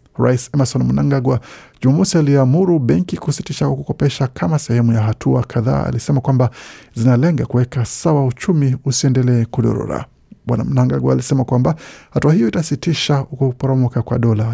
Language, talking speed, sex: Swahili, 130 wpm, male